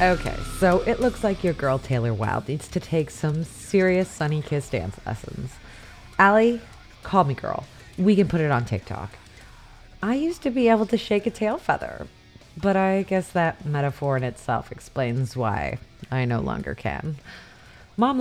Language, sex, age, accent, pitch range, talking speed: English, female, 30-49, American, 130-195 Hz, 170 wpm